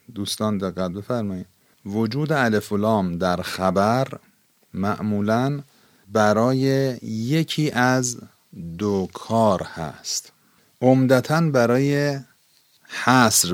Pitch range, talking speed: 95-120 Hz, 75 wpm